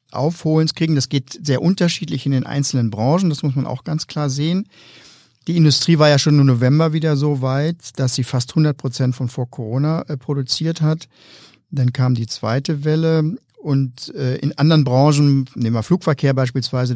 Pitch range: 120-145 Hz